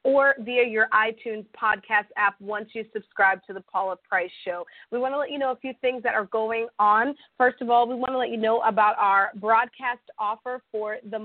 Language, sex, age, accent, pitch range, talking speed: English, female, 30-49, American, 205-245 Hz, 225 wpm